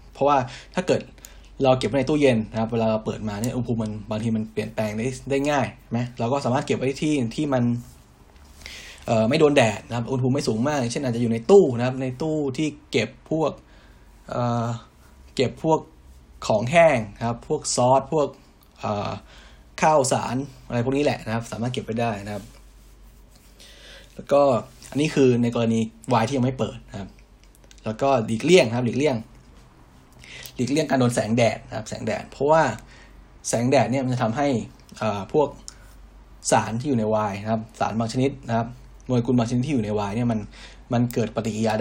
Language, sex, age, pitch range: Thai, male, 20-39, 110-135 Hz